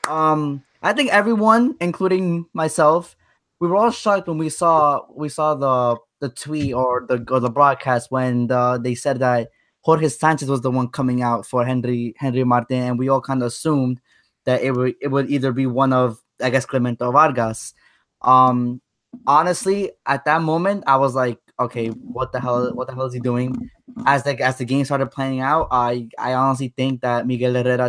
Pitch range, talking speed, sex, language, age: 125-140 Hz, 200 wpm, male, English, 20-39